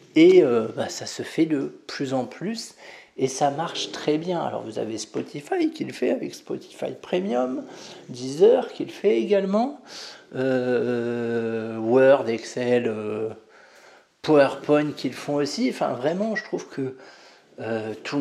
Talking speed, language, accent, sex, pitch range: 150 wpm, French, French, male, 120-180 Hz